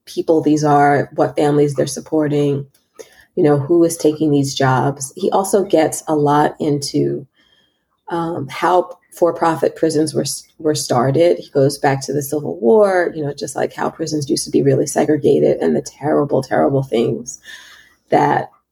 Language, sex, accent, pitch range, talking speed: English, female, American, 150-210 Hz, 165 wpm